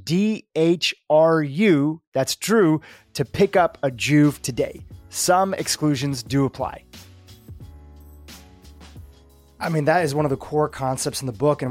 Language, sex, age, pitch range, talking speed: English, male, 30-49, 130-170 Hz, 135 wpm